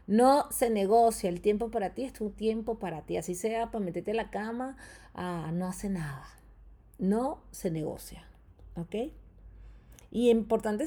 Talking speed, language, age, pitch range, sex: 170 wpm, Spanish, 30-49, 170-230 Hz, female